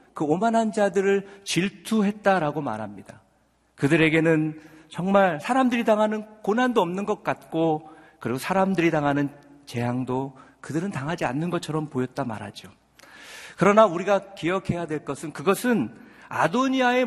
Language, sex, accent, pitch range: Korean, male, native, 150-210 Hz